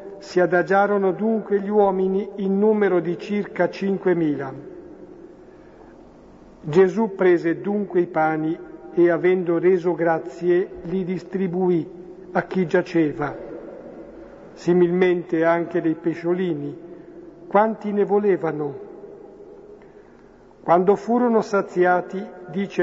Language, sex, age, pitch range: Italian, male, 50-69, 170-195 Hz